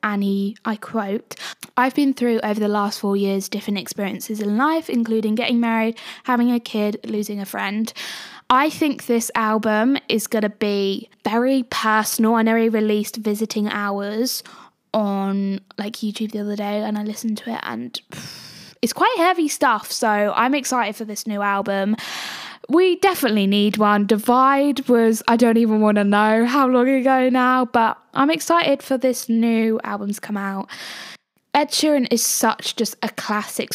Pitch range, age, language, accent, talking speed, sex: 210-255 Hz, 10-29, English, British, 165 wpm, female